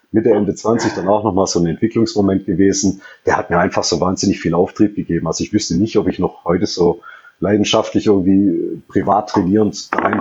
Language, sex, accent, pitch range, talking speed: German, male, German, 85-105 Hz, 200 wpm